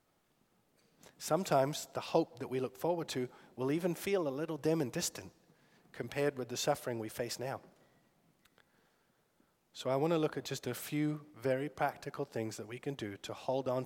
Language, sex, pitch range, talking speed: English, male, 100-130 Hz, 180 wpm